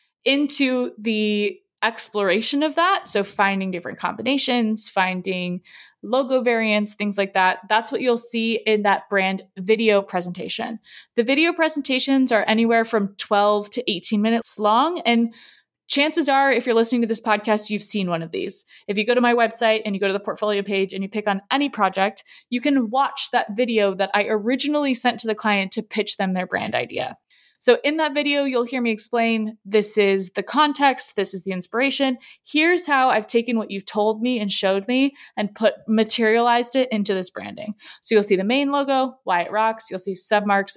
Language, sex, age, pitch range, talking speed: English, female, 20-39, 200-250 Hz, 195 wpm